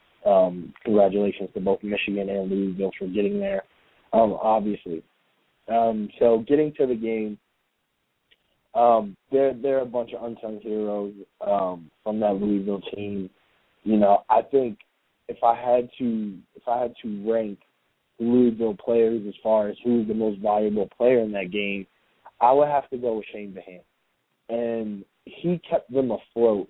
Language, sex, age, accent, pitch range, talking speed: English, male, 20-39, American, 100-120 Hz, 155 wpm